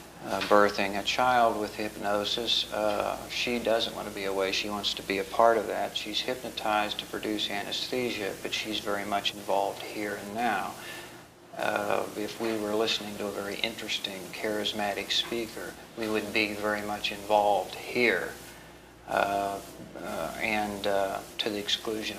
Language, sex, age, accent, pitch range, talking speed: English, male, 50-69, American, 100-110 Hz, 160 wpm